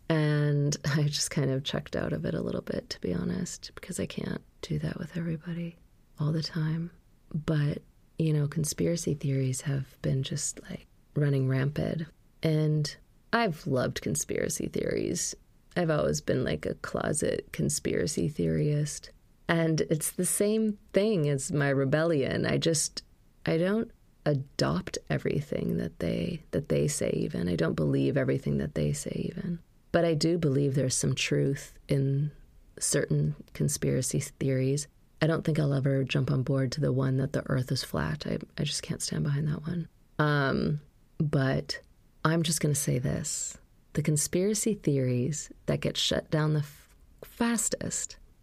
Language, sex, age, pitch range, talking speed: English, female, 30-49, 135-165 Hz, 160 wpm